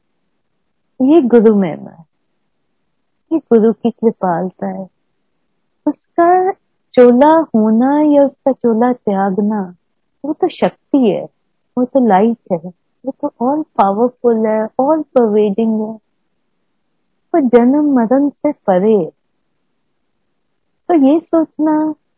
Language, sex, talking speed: Hindi, female, 105 wpm